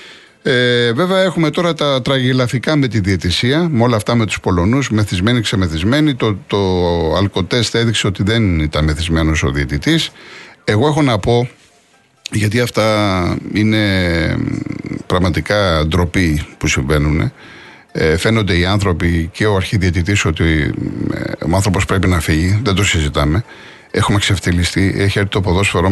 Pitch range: 85-115 Hz